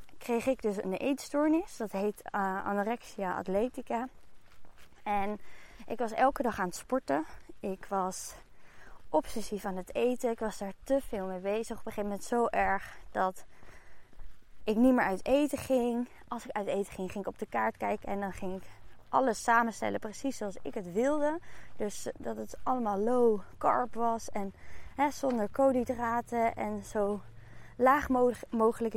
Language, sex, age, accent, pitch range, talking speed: Dutch, female, 20-39, Dutch, 205-245 Hz, 170 wpm